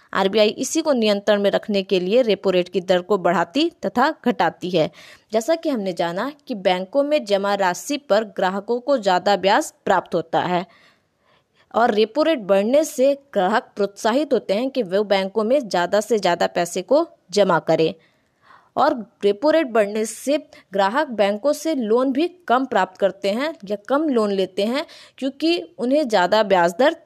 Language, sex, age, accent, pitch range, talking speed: Hindi, female, 20-39, native, 195-285 Hz, 175 wpm